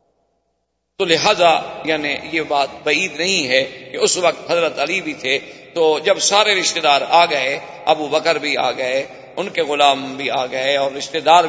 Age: 50-69